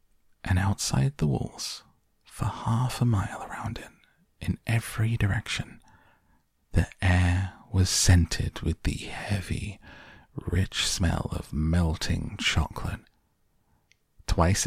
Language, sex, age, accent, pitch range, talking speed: English, male, 30-49, British, 85-105 Hz, 105 wpm